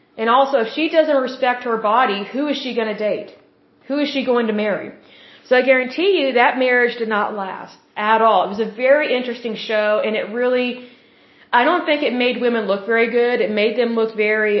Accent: American